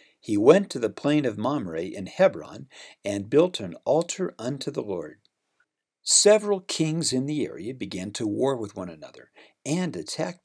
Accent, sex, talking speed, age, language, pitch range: American, male, 165 wpm, 60-79, English, 125-175 Hz